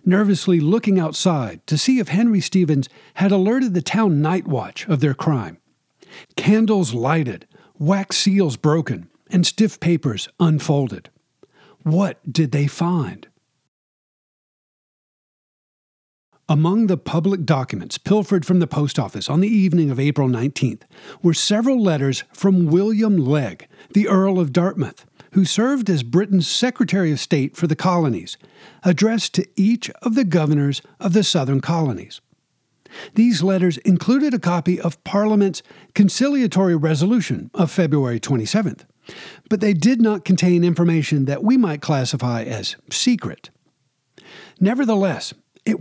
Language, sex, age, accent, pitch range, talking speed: English, male, 50-69, American, 150-200 Hz, 130 wpm